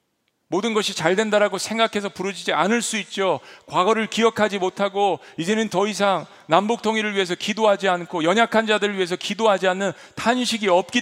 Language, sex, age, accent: Korean, male, 40-59, native